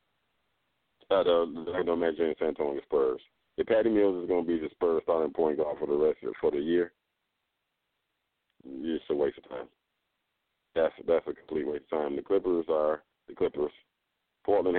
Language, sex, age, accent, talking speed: English, male, 40-59, American, 170 wpm